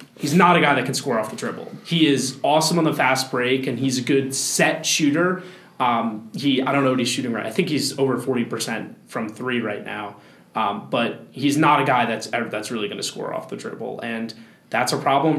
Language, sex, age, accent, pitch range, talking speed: English, male, 20-39, American, 125-155 Hz, 235 wpm